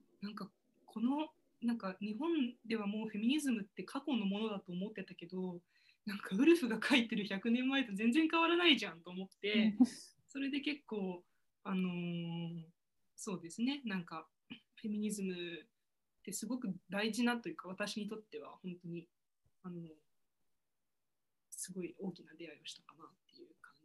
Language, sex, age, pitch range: Japanese, female, 20-39, 190-255 Hz